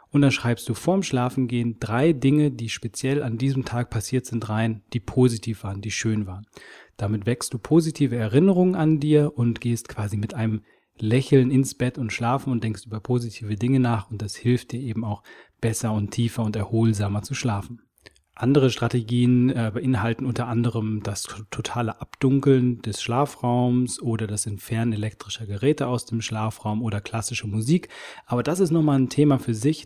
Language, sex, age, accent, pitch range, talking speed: German, male, 30-49, German, 110-130 Hz, 180 wpm